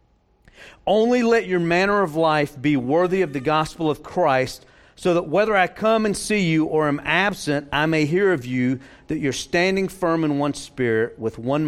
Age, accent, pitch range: 50-69, American, 115-170 Hz